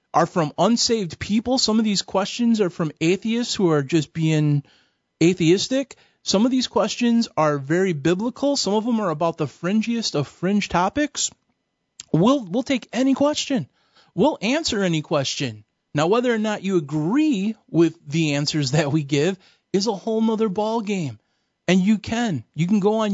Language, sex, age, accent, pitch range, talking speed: English, male, 30-49, American, 160-225 Hz, 175 wpm